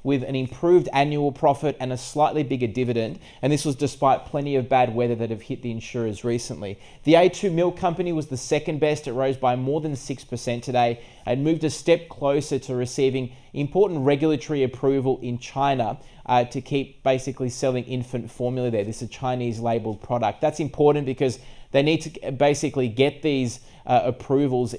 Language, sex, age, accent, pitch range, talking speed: English, male, 20-39, Australian, 120-145 Hz, 185 wpm